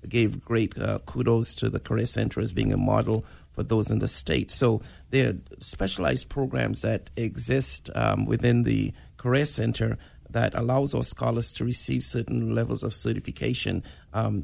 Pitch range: 90-125 Hz